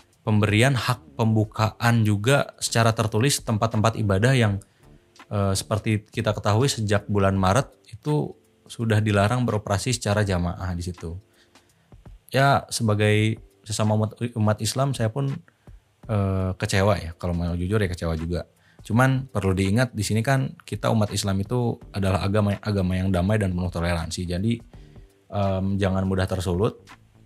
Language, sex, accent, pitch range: Indonesian, male, native, 95-115 Hz